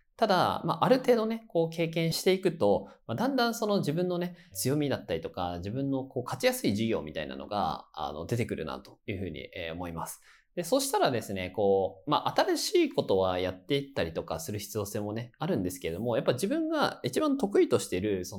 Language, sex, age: Japanese, male, 20-39